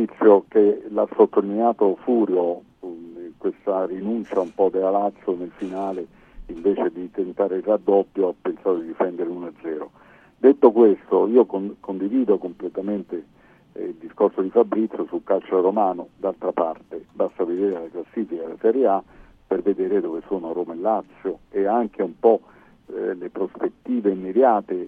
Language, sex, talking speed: Italian, male, 150 wpm